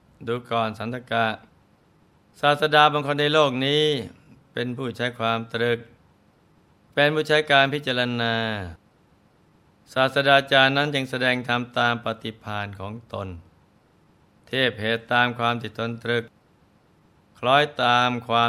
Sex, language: male, Thai